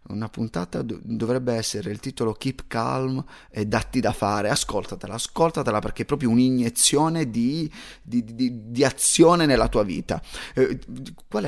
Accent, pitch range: native, 115-195 Hz